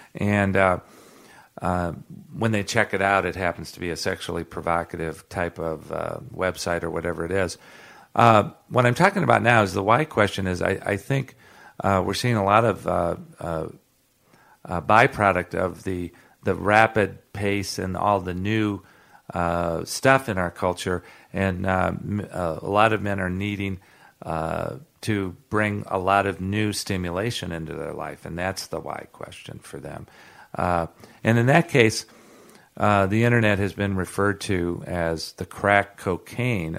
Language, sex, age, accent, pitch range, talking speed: English, male, 50-69, American, 90-110 Hz, 170 wpm